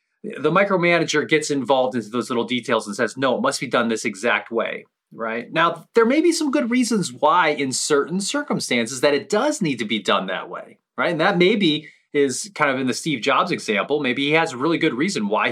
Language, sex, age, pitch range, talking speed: English, male, 30-49, 120-180 Hz, 230 wpm